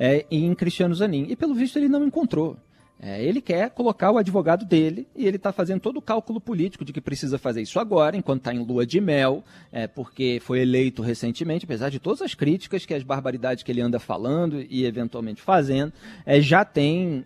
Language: Portuguese